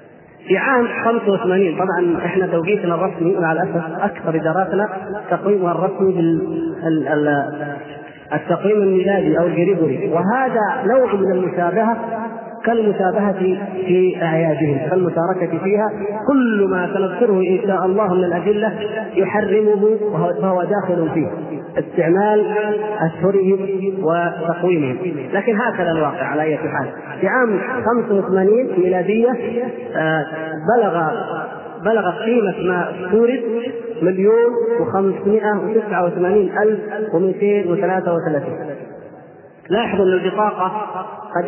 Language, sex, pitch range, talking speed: Arabic, male, 170-210 Hz, 90 wpm